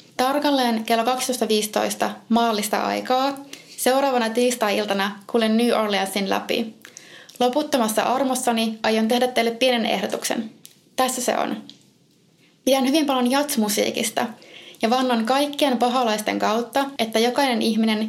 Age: 20-39